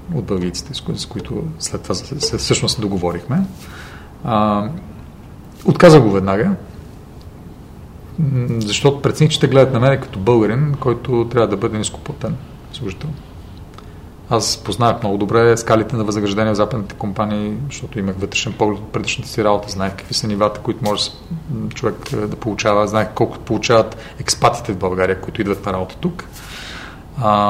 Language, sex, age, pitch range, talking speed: Bulgarian, male, 40-59, 100-135 Hz, 140 wpm